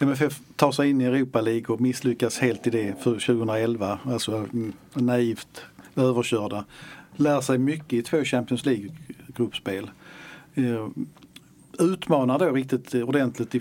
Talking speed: 120 wpm